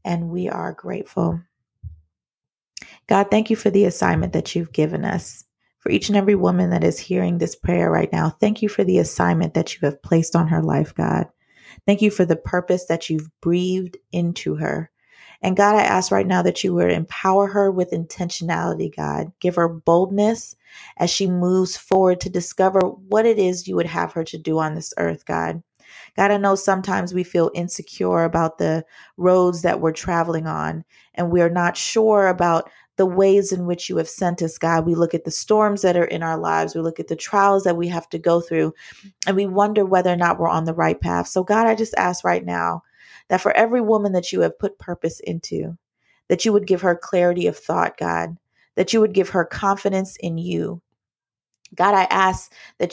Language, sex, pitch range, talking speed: English, female, 160-195 Hz, 210 wpm